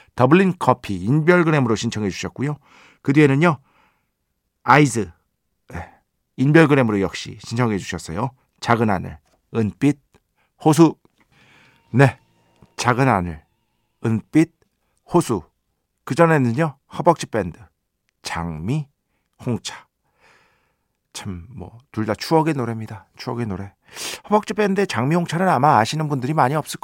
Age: 50-69